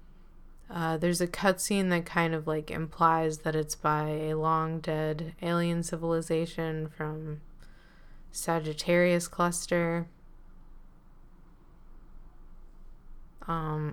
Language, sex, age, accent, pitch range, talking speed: English, female, 20-39, American, 155-175 Hz, 85 wpm